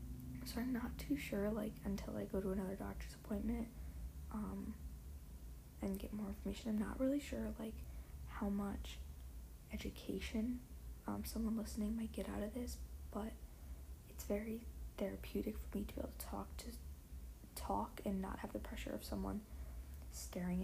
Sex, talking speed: female, 160 wpm